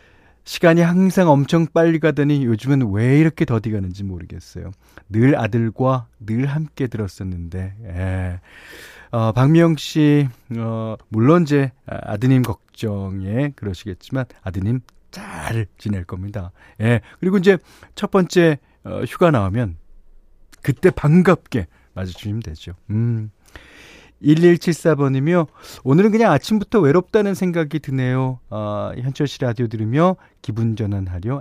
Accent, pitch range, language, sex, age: native, 100-155 Hz, Korean, male, 40-59